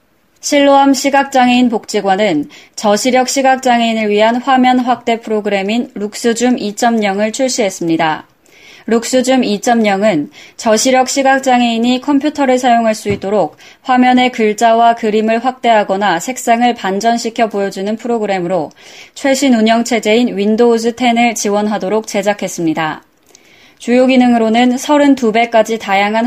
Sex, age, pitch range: female, 20-39, 205-250 Hz